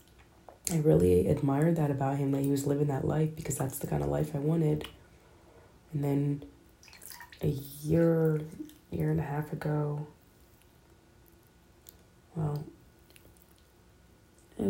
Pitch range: 135-160 Hz